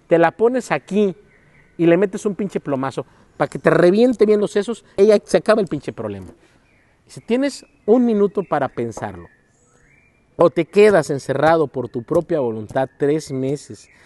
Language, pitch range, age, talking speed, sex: Spanish, 120-170 Hz, 50-69, 170 wpm, male